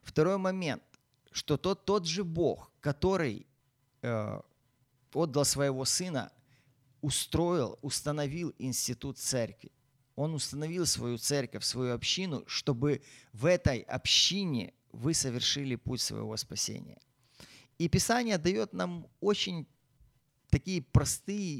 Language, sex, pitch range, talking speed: Ukrainian, male, 125-155 Hz, 105 wpm